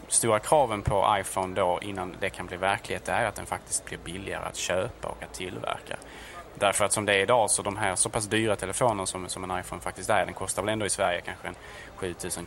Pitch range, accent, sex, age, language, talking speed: 95-115 Hz, Norwegian, male, 20-39, Swedish, 230 wpm